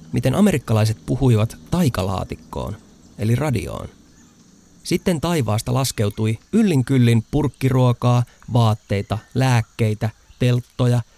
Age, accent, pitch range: 30-49, native, 90-135 Hz